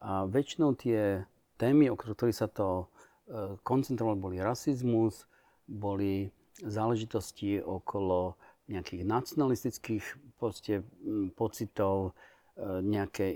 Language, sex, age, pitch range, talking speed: Slovak, male, 50-69, 100-125 Hz, 80 wpm